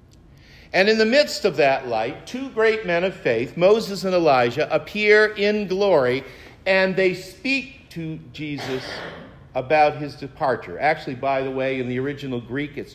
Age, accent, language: 50-69, American, English